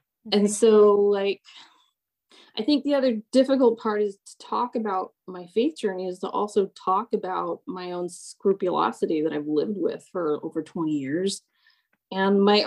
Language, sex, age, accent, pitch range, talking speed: English, female, 20-39, American, 190-225 Hz, 160 wpm